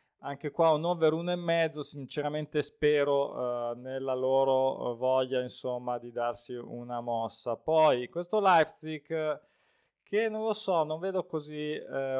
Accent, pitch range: native, 135-165 Hz